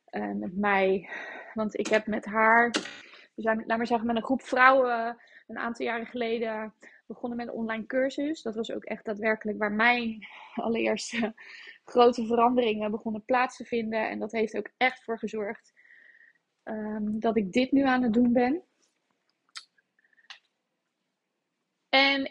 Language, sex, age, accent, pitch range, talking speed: Dutch, female, 20-39, Dutch, 225-270 Hz, 150 wpm